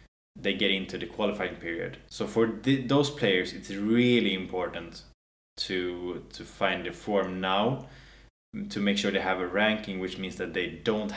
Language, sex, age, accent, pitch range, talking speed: English, male, 20-39, Norwegian, 90-105 Hz, 170 wpm